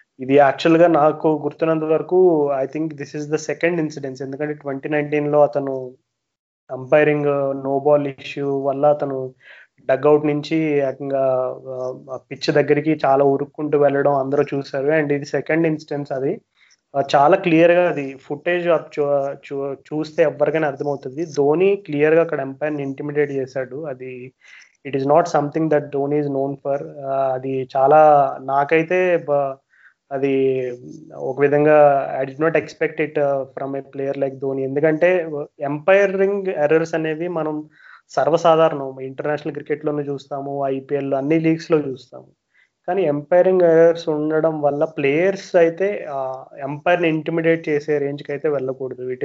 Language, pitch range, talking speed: Telugu, 135-155 Hz, 130 wpm